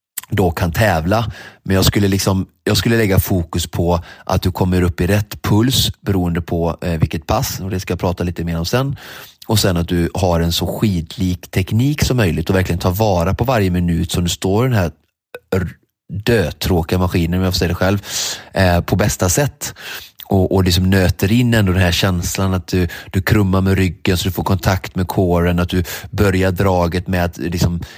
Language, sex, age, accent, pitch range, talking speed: Swedish, male, 30-49, native, 90-105 Hz, 210 wpm